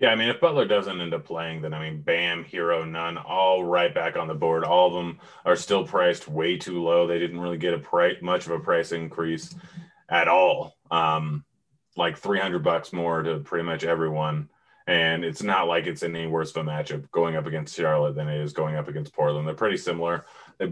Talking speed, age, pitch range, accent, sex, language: 225 wpm, 30-49, 80-90 Hz, American, male, English